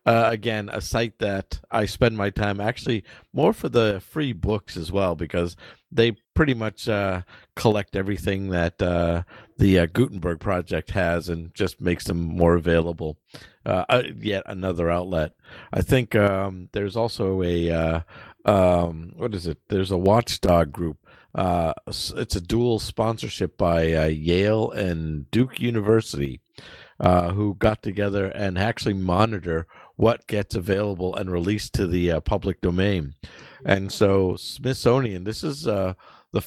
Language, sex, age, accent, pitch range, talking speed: English, male, 50-69, American, 85-105 Hz, 150 wpm